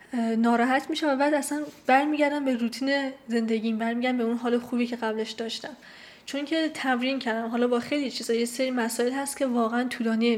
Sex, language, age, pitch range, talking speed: female, Persian, 10-29, 230-270 Hz, 185 wpm